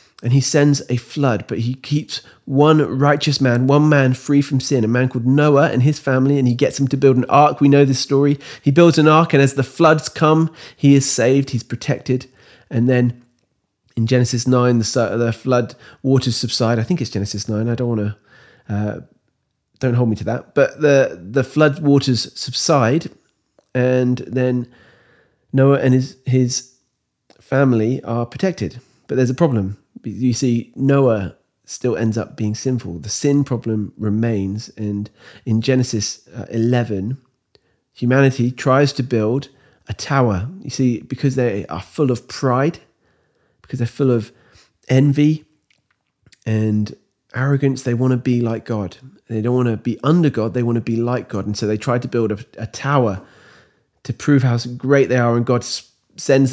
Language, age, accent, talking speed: English, 30-49, British, 175 wpm